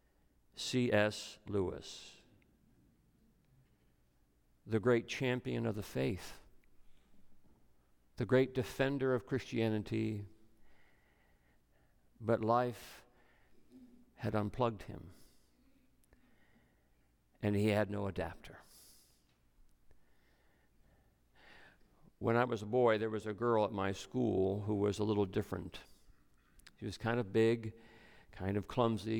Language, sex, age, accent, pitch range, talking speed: English, male, 50-69, American, 95-120 Hz, 100 wpm